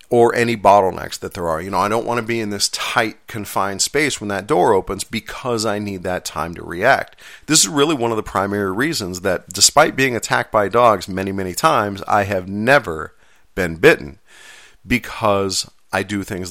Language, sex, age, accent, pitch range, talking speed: English, male, 40-59, American, 90-120 Hz, 200 wpm